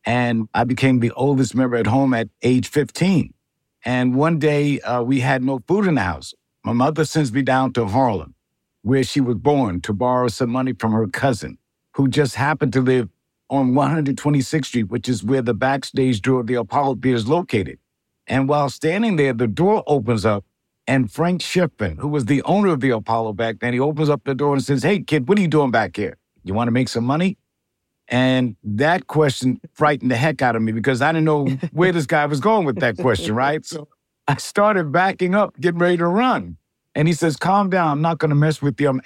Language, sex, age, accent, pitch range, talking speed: English, male, 60-79, American, 125-155 Hz, 225 wpm